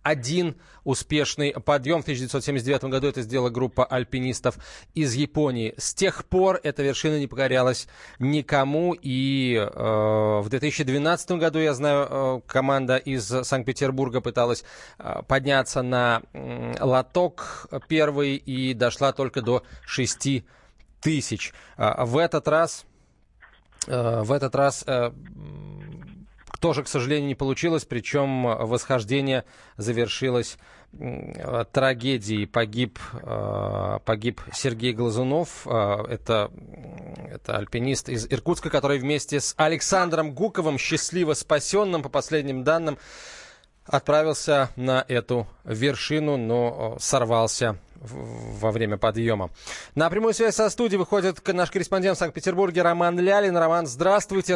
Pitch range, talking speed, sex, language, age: 120-160 Hz, 110 wpm, male, Russian, 20-39